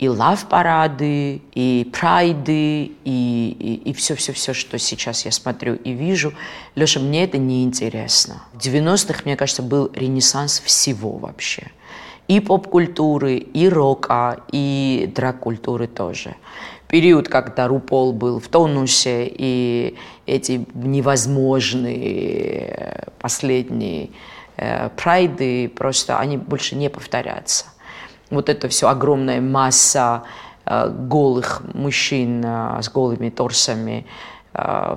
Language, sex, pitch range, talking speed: Russian, female, 125-155 Hz, 105 wpm